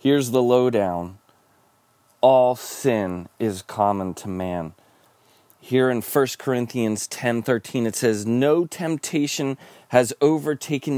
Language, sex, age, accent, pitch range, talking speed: English, male, 30-49, American, 120-170 Hz, 115 wpm